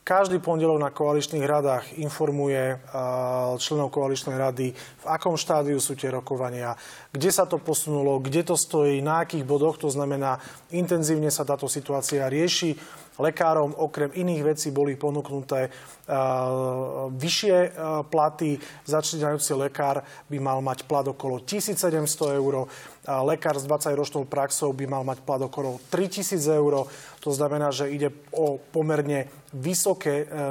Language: Slovak